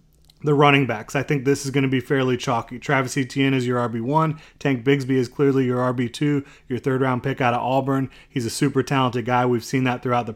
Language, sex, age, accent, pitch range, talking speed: English, male, 30-49, American, 120-135 Hz, 230 wpm